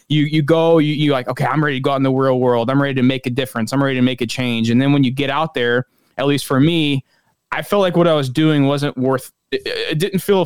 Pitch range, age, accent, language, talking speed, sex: 130-165 Hz, 20-39, American, English, 300 wpm, male